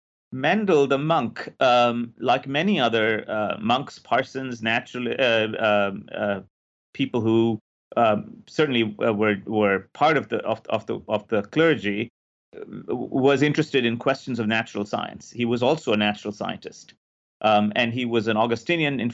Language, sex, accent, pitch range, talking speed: English, male, Indian, 105-140 Hz, 160 wpm